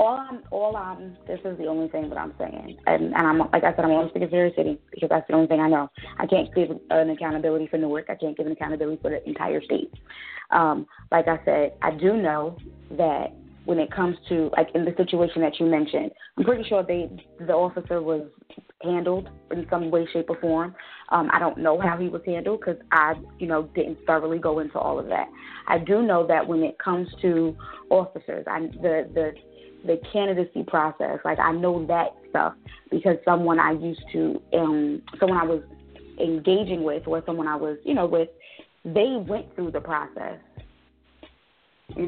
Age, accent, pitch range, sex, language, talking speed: 20-39, American, 160-185 Hz, female, English, 205 wpm